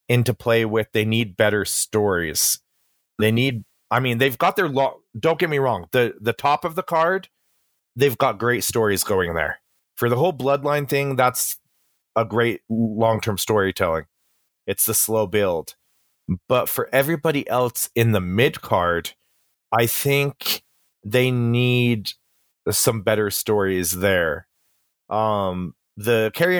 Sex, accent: male, American